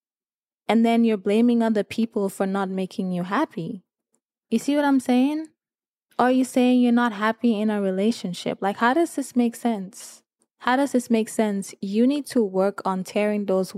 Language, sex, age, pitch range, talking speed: English, female, 20-39, 190-240 Hz, 185 wpm